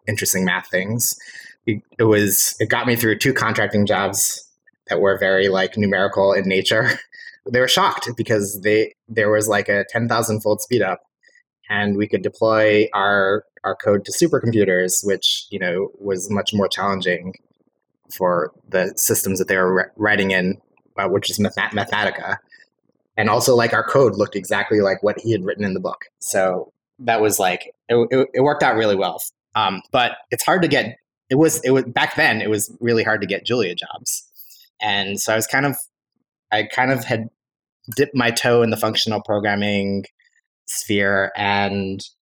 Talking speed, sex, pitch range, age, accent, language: 180 wpm, male, 100-120 Hz, 20-39, American, English